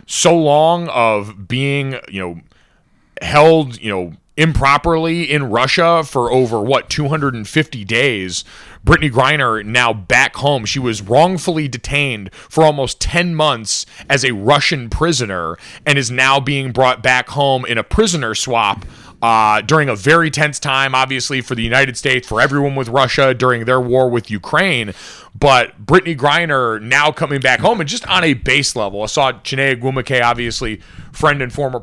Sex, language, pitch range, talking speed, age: male, English, 120-150 Hz, 160 wpm, 30-49